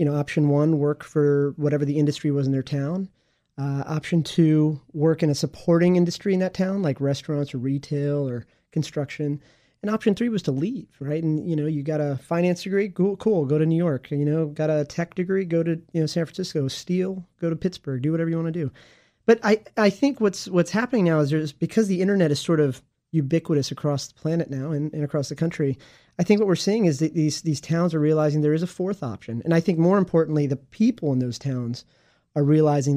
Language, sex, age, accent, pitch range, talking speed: English, male, 30-49, American, 145-175 Hz, 230 wpm